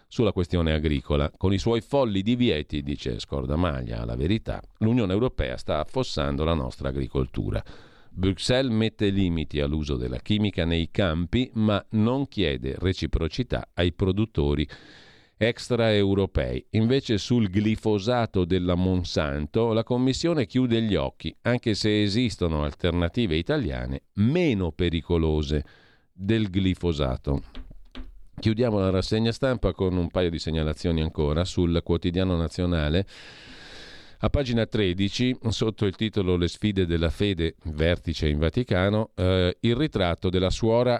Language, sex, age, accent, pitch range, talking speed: Italian, male, 50-69, native, 80-110 Hz, 125 wpm